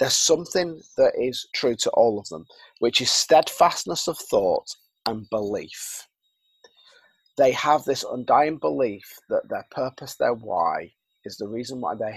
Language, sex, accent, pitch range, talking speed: English, male, British, 120-175 Hz, 155 wpm